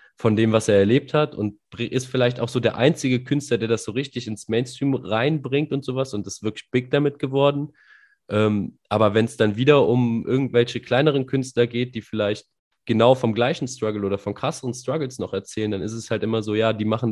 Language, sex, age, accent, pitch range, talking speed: German, male, 20-39, German, 105-130 Hz, 215 wpm